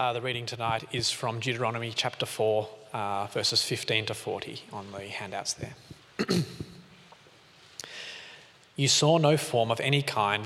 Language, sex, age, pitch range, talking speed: English, male, 20-39, 105-130 Hz, 145 wpm